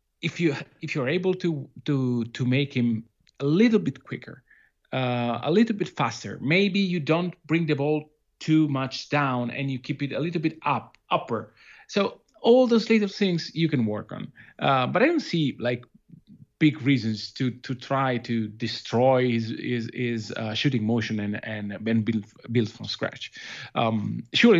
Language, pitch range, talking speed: English, 115-145 Hz, 175 wpm